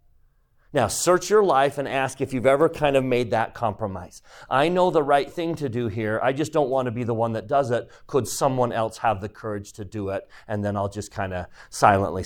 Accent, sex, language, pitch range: American, male, English, 95-130 Hz